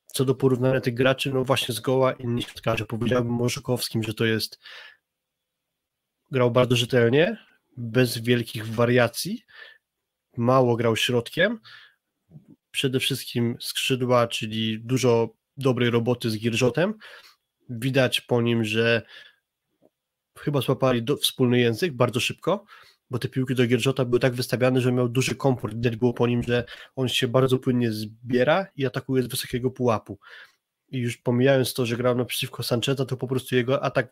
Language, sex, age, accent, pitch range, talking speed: Polish, male, 20-39, native, 120-130 Hz, 150 wpm